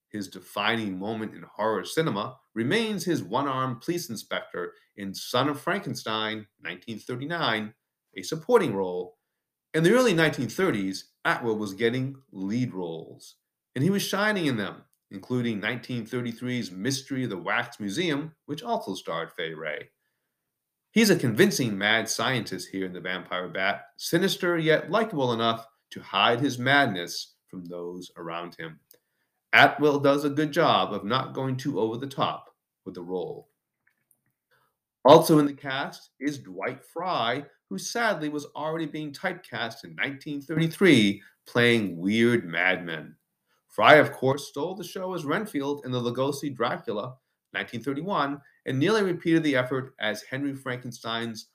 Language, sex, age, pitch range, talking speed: English, male, 40-59, 105-150 Hz, 140 wpm